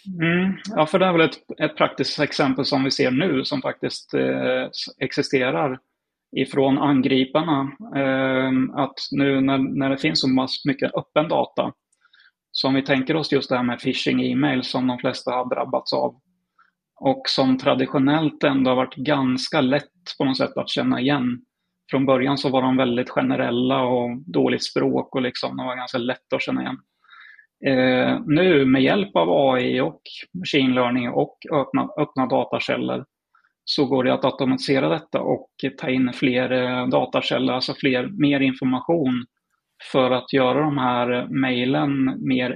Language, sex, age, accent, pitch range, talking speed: Swedish, male, 30-49, native, 130-140 Hz, 165 wpm